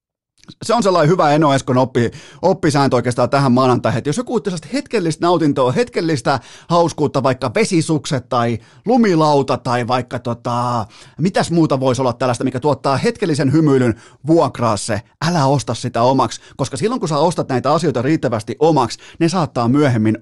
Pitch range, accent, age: 125-170 Hz, native, 30-49